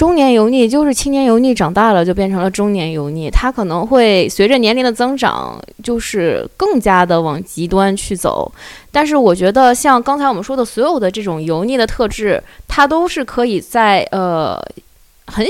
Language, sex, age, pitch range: Chinese, female, 20-39, 190-260 Hz